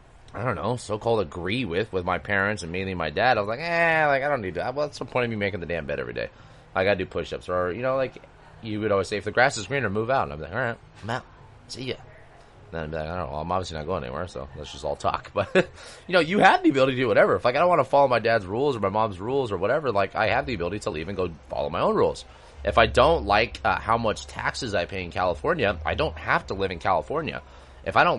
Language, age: English, 20-39